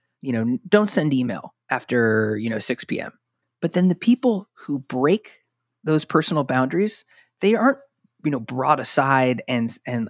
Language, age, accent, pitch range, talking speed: English, 30-49, American, 125-165 Hz, 160 wpm